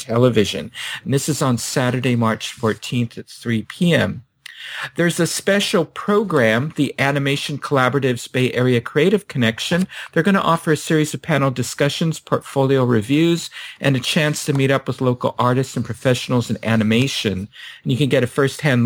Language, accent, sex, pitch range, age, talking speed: English, American, male, 115-155 Hz, 50-69, 165 wpm